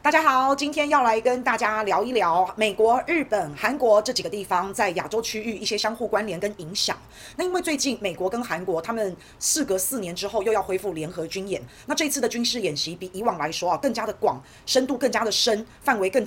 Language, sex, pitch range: Chinese, female, 195-250 Hz